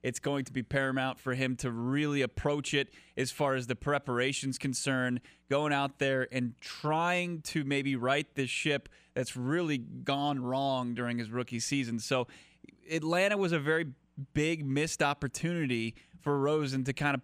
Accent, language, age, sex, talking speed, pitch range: American, English, 20-39, male, 165 wpm, 130-160 Hz